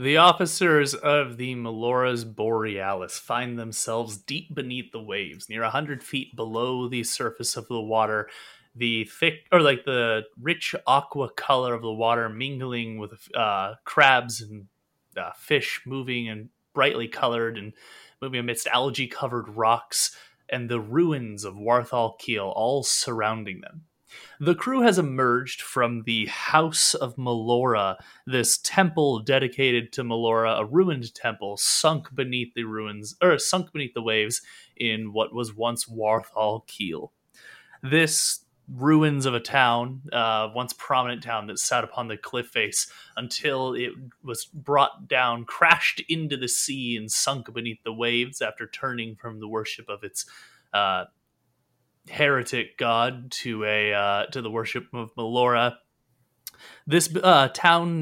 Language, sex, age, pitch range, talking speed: English, male, 30-49, 115-135 Hz, 145 wpm